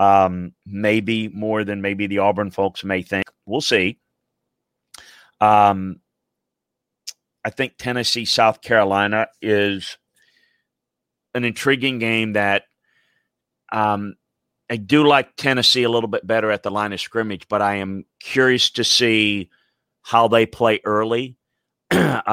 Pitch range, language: 100-115 Hz, English